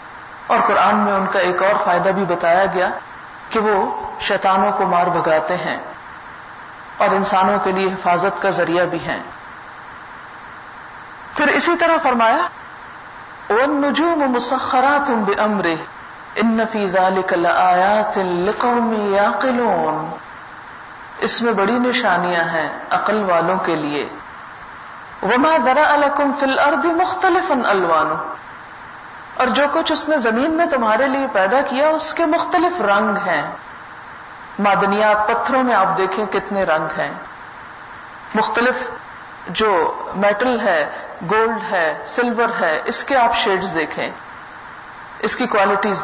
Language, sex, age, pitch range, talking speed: Urdu, female, 50-69, 190-255 Hz, 120 wpm